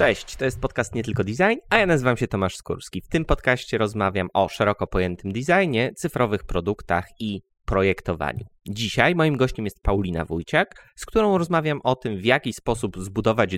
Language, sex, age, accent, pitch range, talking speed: Polish, male, 20-39, native, 95-120 Hz, 175 wpm